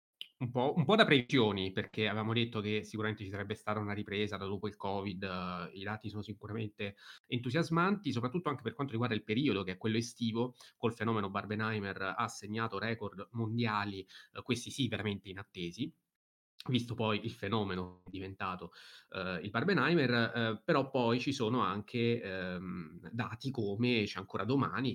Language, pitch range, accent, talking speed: Italian, 95-115 Hz, native, 165 wpm